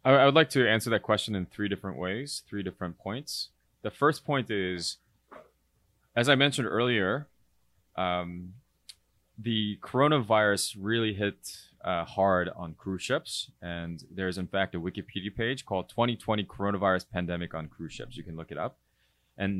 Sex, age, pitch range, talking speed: male, 20-39, 85-115 Hz, 160 wpm